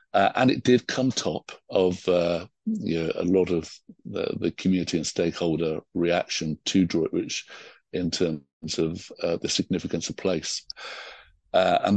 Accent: British